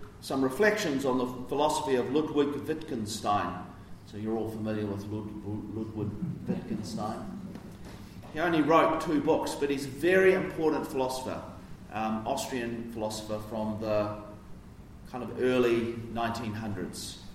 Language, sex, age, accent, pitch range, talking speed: English, male, 40-59, Australian, 105-145 Hz, 120 wpm